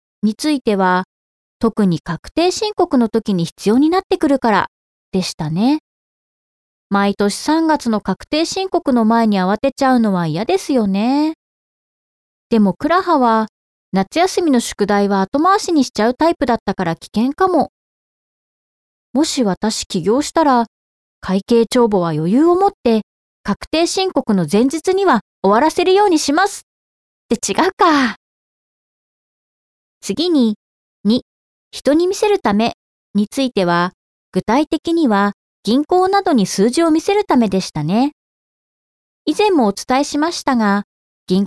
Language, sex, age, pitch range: Japanese, female, 20-39, 205-310 Hz